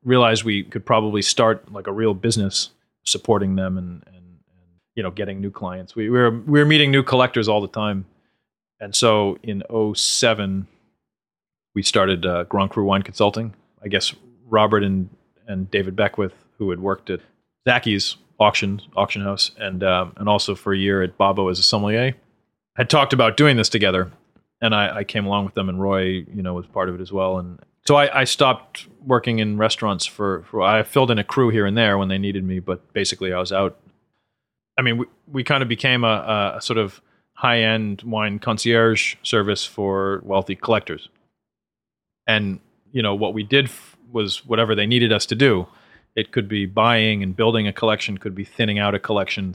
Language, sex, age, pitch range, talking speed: English, male, 30-49, 95-115 Hz, 200 wpm